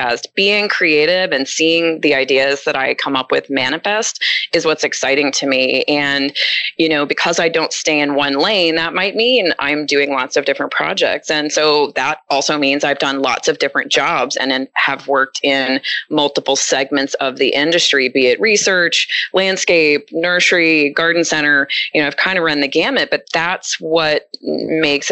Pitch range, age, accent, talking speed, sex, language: 140-175 Hz, 30-49, American, 180 wpm, female, English